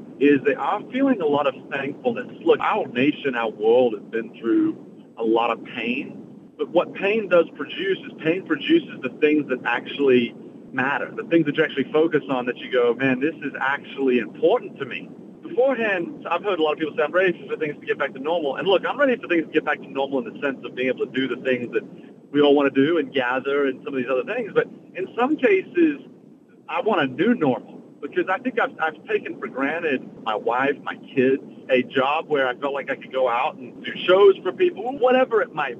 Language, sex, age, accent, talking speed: English, male, 40-59, American, 235 wpm